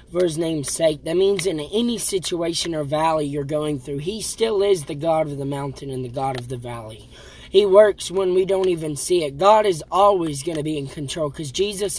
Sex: male